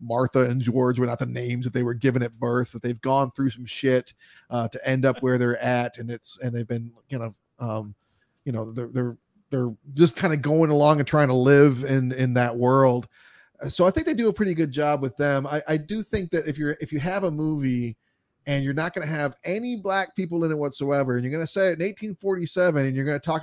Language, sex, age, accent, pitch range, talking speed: English, male, 30-49, American, 125-165 Hz, 255 wpm